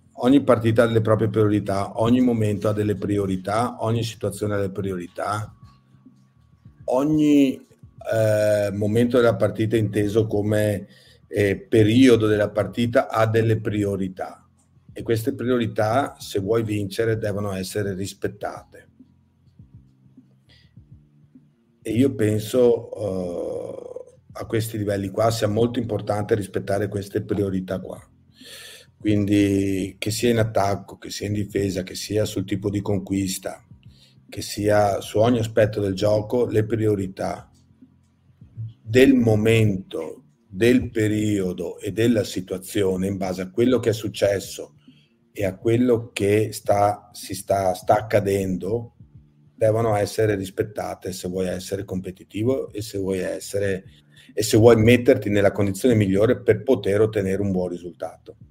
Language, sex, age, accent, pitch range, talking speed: Italian, male, 50-69, native, 100-115 Hz, 130 wpm